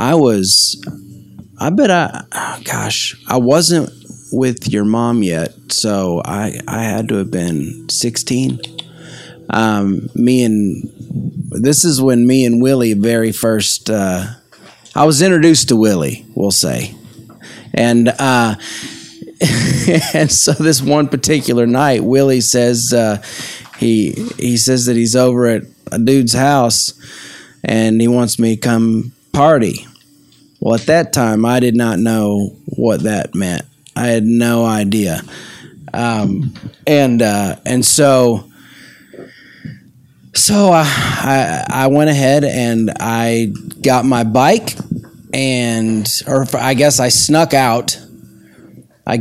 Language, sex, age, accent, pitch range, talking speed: English, male, 30-49, American, 110-135 Hz, 130 wpm